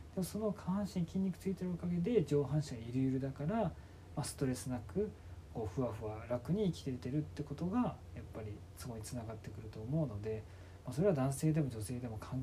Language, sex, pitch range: Japanese, male, 105-145 Hz